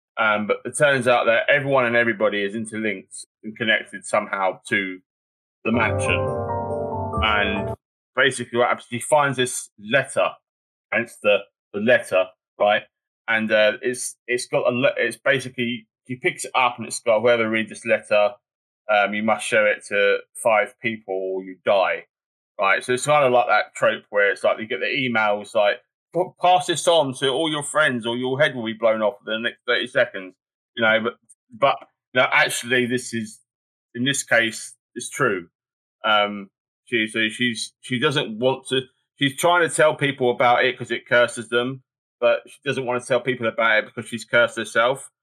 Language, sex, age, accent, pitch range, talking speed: English, male, 20-39, British, 110-135 Hz, 190 wpm